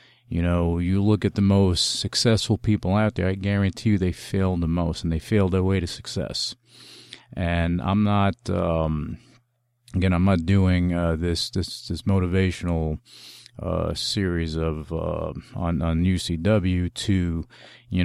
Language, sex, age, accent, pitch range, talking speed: English, male, 40-59, American, 85-115 Hz, 155 wpm